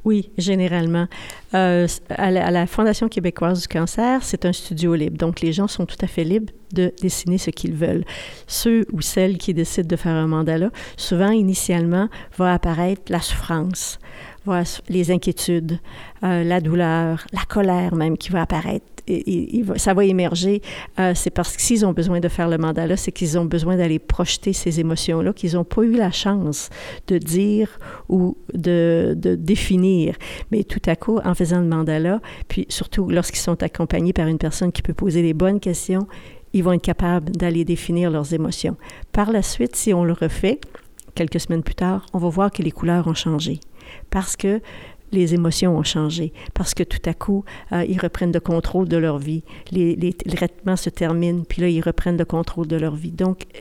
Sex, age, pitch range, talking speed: female, 50-69, 170-190 Hz, 190 wpm